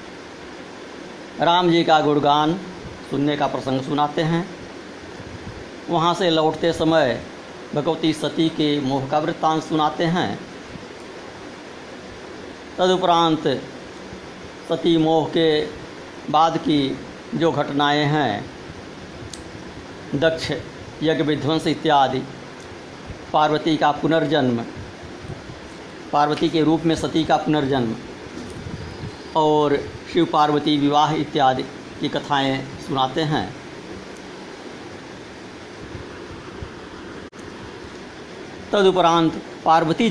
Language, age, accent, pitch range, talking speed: Hindi, 60-79, native, 135-165 Hz, 80 wpm